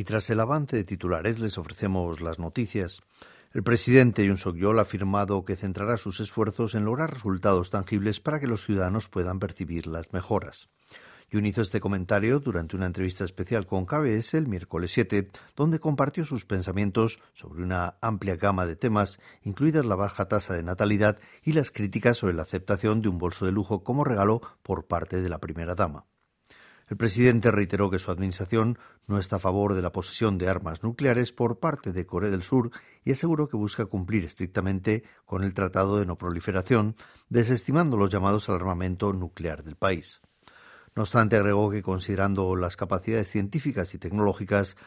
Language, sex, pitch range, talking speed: Spanish, male, 95-115 Hz, 175 wpm